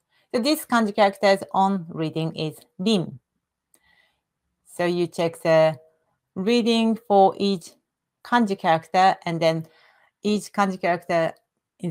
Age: 40-59